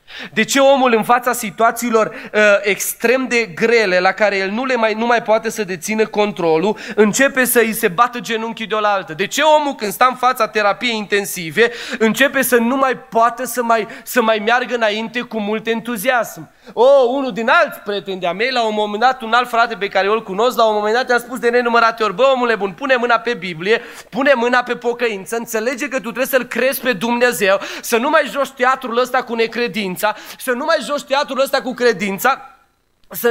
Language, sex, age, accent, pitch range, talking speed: Romanian, male, 20-39, native, 230-285 Hz, 210 wpm